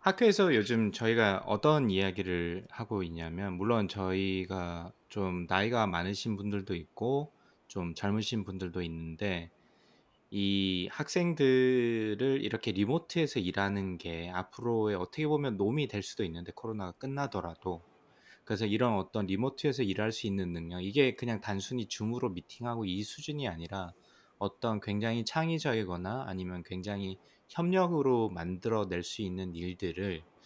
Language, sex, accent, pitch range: Korean, male, native, 95-125 Hz